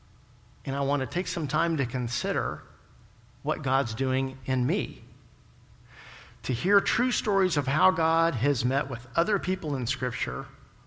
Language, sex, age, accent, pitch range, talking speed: English, male, 50-69, American, 120-145 Hz, 155 wpm